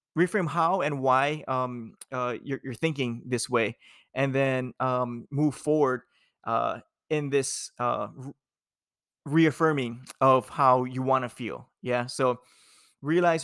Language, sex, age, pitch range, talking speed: English, male, 20-39, 130-150 Hz, 135 wpm